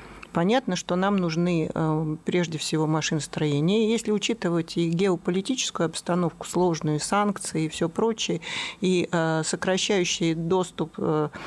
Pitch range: 165-200 Hz